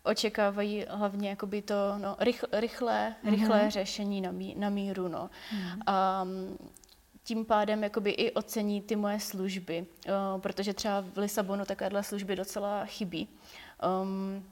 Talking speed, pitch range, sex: 130 wpm, 195-210 Hz, female